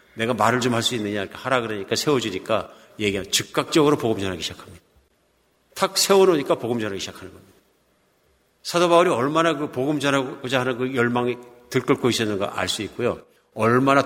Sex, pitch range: male, 110-145 Hz